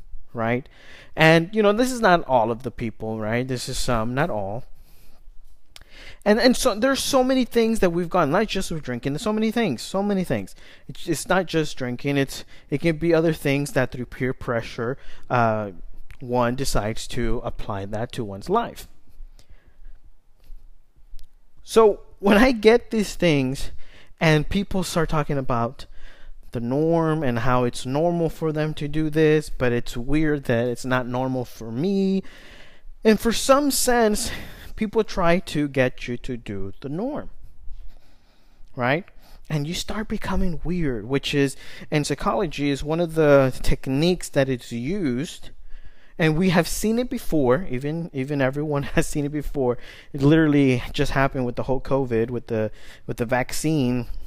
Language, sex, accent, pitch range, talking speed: English, male, American, 120-170 Hz, 165 wpm